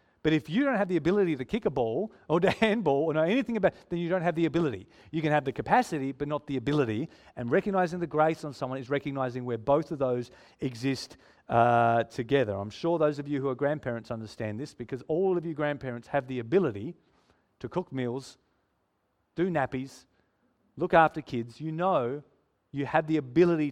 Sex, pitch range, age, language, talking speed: male, 130-180 Hz, 40-59, English, 205 wpm